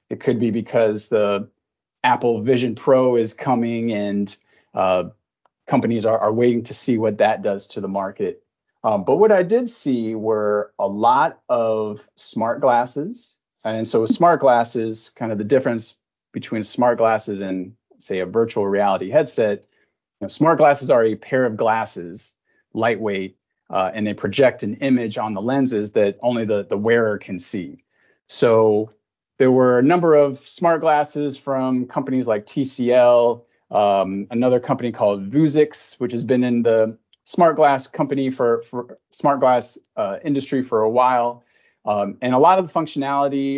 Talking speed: 165 wpm